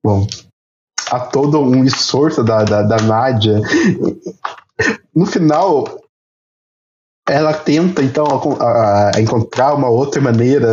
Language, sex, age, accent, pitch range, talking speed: Portuguese, male, 20-39, Brazilian, 115-175 Hz, 110 wpm